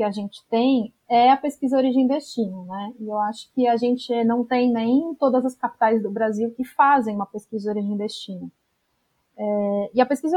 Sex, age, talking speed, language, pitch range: female, 30-49, 205 wpm, Portuguese, 230-275 Hz